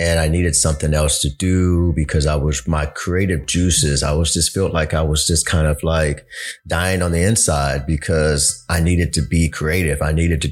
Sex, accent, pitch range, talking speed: male, American, 80-95 Hz, 210 wpm